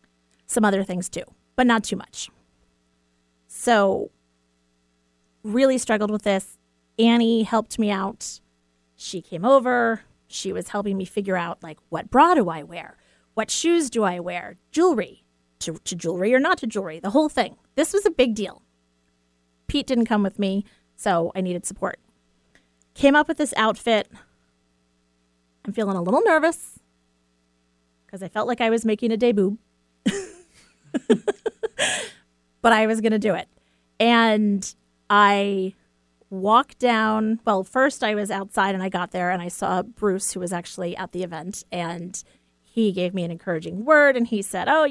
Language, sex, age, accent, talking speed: English, female, 30-49, American, 165 wpm